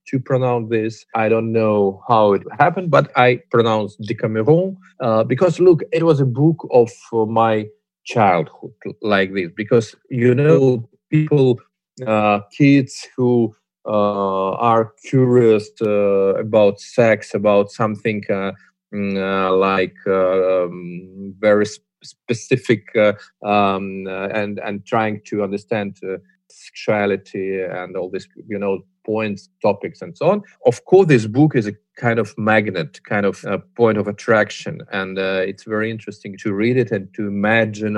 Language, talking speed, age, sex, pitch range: Russian, 150 wpm, 30-49, male, 95-125 Hz